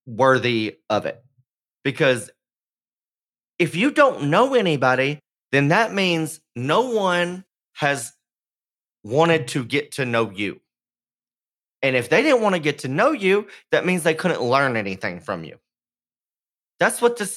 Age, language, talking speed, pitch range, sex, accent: 30-49, English, 145 wpm, 120-180 Hz, male, American